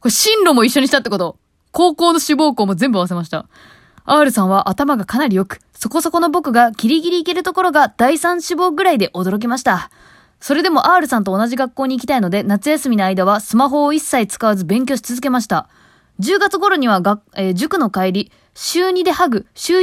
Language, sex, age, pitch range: Japanese, female, 20-39, 185-290 Hz